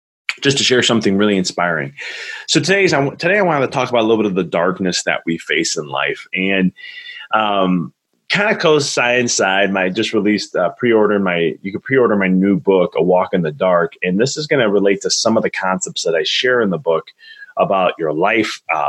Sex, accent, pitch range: male, American, 100-135 Hz